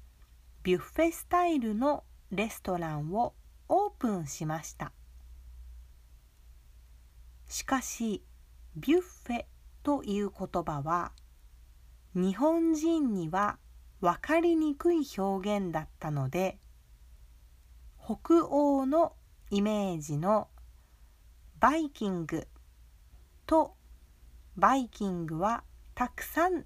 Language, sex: Japanese, female